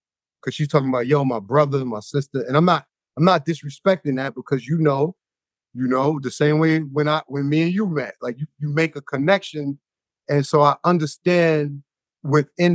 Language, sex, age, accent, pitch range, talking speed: English, male, 30-49, American, 130-155 Hz, 200 wpm